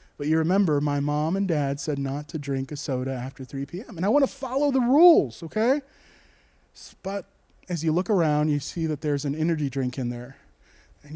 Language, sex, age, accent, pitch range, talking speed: English, male, 20-39, American, 150-240 Hz, 210 wpm